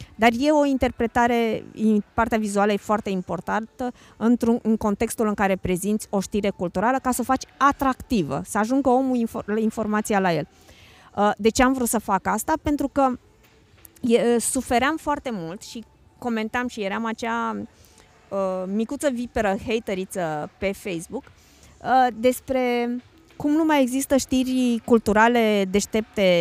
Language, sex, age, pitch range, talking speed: Romanian, female, 20-39, 210-255 Hz, 130 wpm